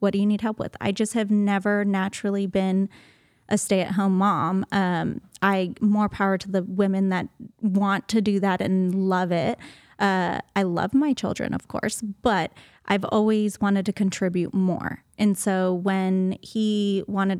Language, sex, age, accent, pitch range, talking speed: English, female, 20-39, American, 190-210 Hz, 170 wpm